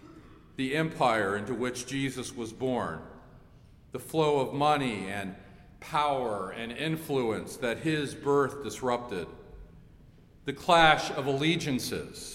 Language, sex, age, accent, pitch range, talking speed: English, male, 50-69, American, 125-155 Hz, 110 wpm